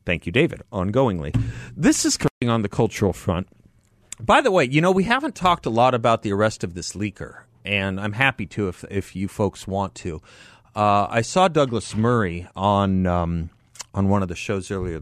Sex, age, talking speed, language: male, 40-59, 200 wpm, English